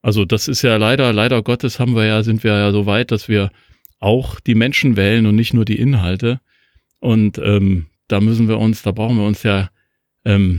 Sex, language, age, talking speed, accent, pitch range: male, German, 40-59, 215 wpm, German, 100-120 Hz